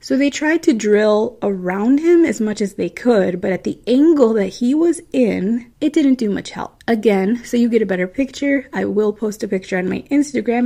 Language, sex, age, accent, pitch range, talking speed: English, female, 20-39, American, 195-250 Hz, 225 wpm